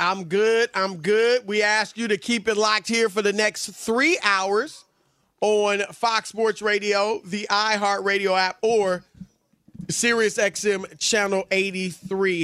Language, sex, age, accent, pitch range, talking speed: English, male, 30-49, American, 180-220 Hz, 145 wpm